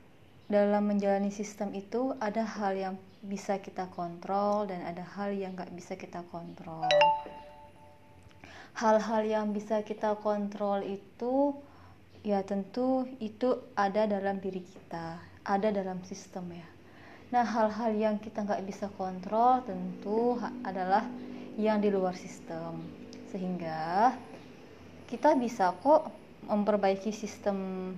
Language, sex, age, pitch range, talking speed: Indonesian, female, 20-39, 185-225 Hz, 115 wpm